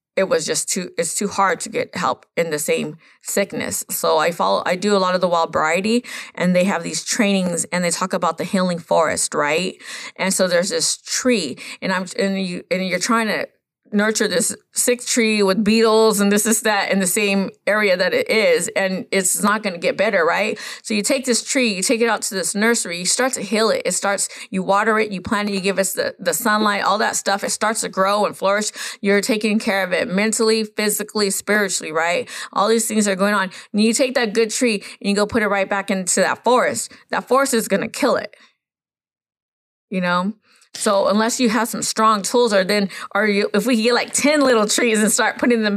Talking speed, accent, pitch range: 235 wpm, American, 190-235 Hz